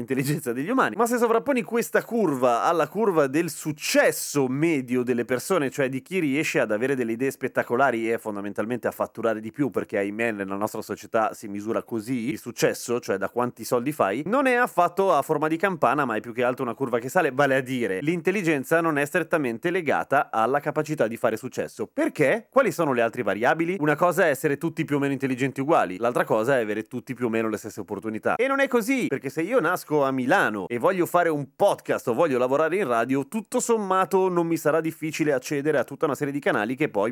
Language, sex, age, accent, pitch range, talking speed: Italian, male, 30-49, native, 120-165 Hz, 220 wpm